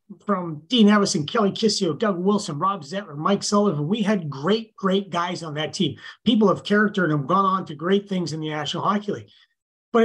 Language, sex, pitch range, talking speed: English, male, 165-210 Hz, 210 wpm